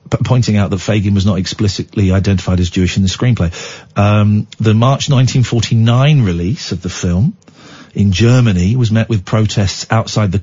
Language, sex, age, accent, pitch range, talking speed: English, male, 50-69, British, 105-130 Hz, 160 wpm